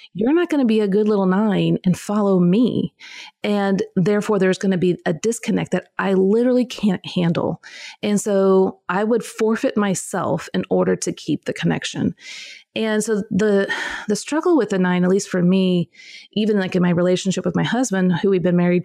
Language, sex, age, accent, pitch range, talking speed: English, female, 30-49, American, 180-215 Hz, 195 wpm